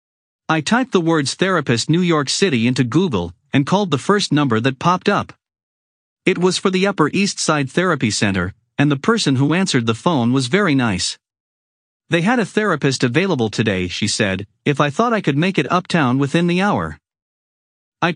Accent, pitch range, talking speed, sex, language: American, 115-180 Hz, 190 wpm, male, English